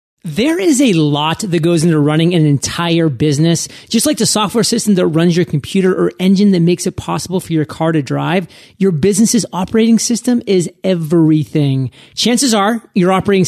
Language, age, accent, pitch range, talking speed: English, 30-49, American, 160-200 Hz, 185 wpm